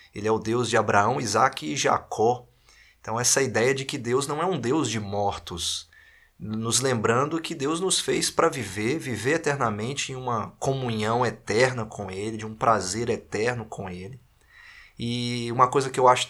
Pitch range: 105-125 Hz